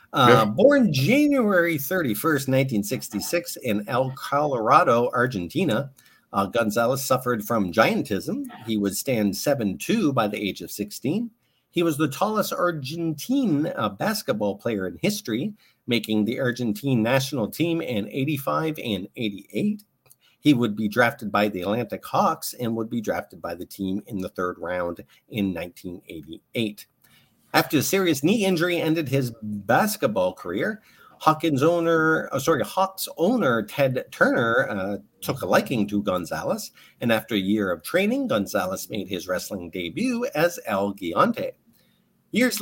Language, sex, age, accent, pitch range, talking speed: English, male, 50-69, American, 105-175 Hz, 140 wpm